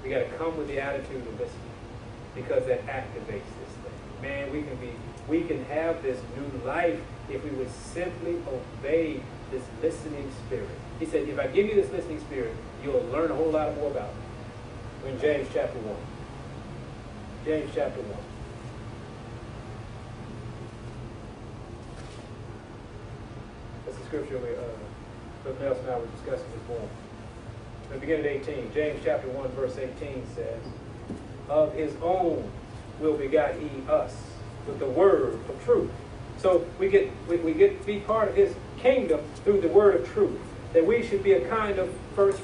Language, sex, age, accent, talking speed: English, male, 30-49, American, 165 wpm